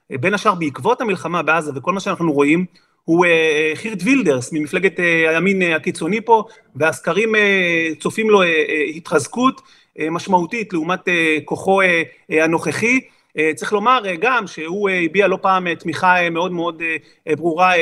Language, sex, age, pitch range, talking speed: Hebrew, male, 40-59, 160-205 Hz, 120 wpm